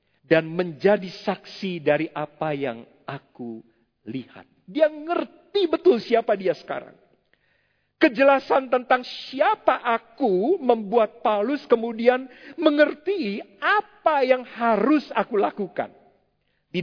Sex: male